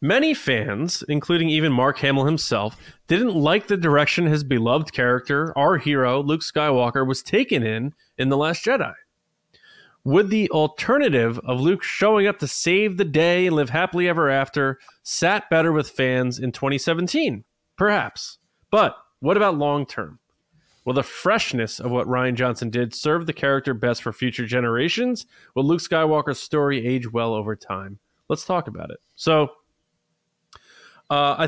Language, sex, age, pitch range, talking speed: English, male, 20-39, 120-155 Hz, 160 wpm